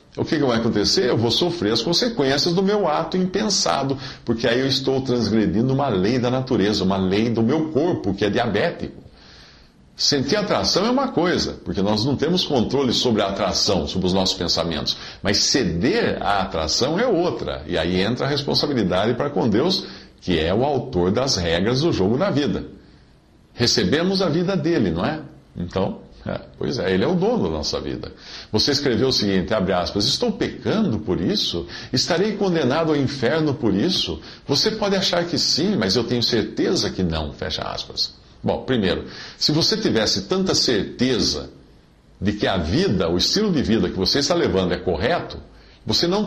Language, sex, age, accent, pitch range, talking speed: Portuguese, male, 50-69, Brazilian, 95-150 Hz, 180 wpm